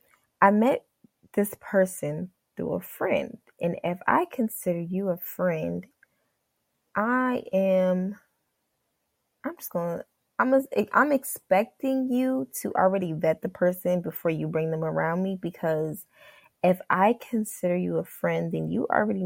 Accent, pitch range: American, 175-235 Hz